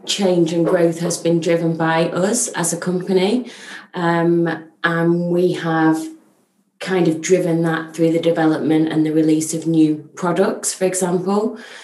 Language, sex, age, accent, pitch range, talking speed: English, female, 20-39, British, 160-175 Hz, 150 wpm